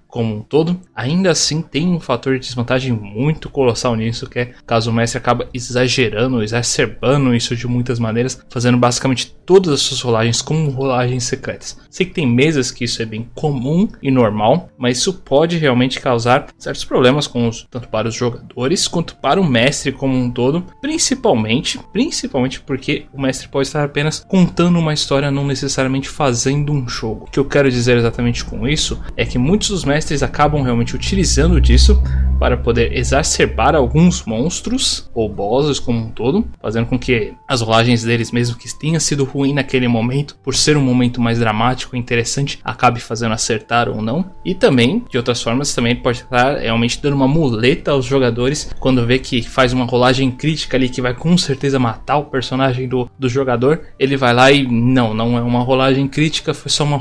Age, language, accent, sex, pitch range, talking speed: 20-39, Portuguese, Brazilian, male, 120-145 Hz, 185 wpm